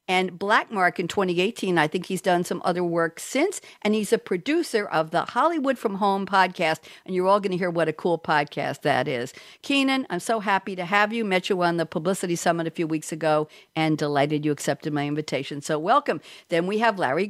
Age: 50-69